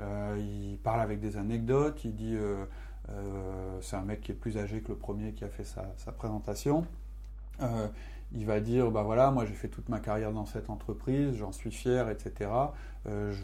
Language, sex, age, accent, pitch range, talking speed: French, male, 30-49, French, 100-120 Hz, 210 wpm